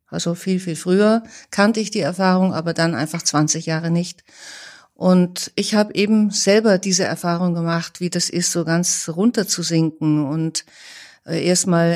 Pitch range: 170-200 Hz